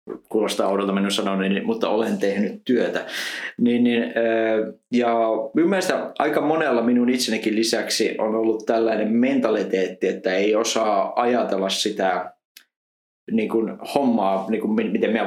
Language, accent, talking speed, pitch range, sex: Finnish, native, 120 wpm, 100-120 Hz, male